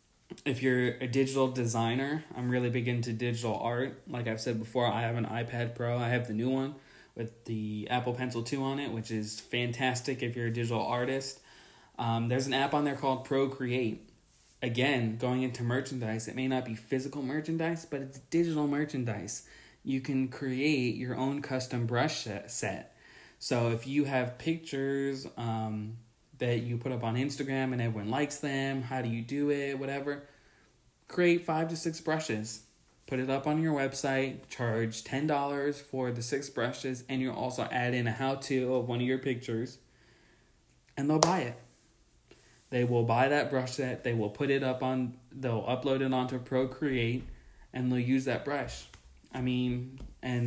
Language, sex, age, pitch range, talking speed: English, male, 20-39, 120-135 Hz, 180 wpm